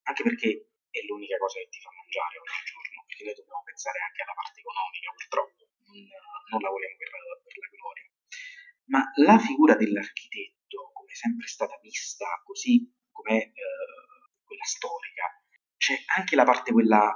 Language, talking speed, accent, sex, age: Italian, 170 wpm, native, male, 30-49